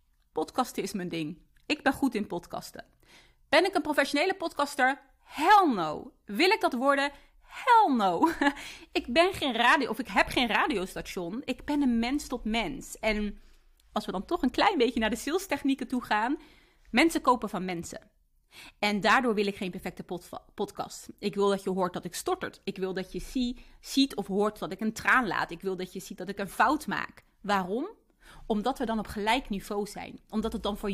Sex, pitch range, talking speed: female, 200-270 Hz, 205 wpm